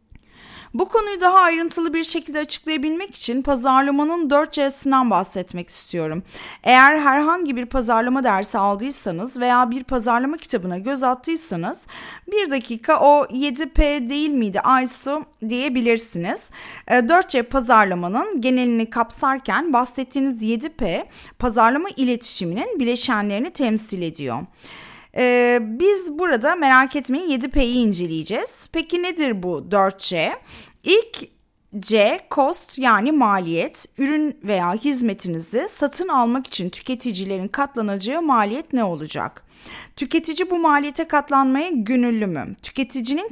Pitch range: 225-295 Hz